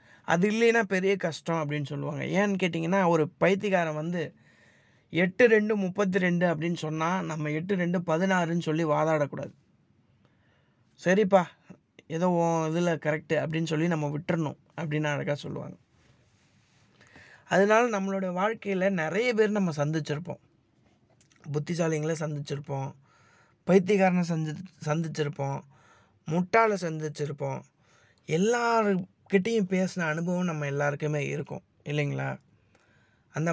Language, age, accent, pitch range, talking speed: Tamil, 20-39, native, 150-190 Hz, 100 wpm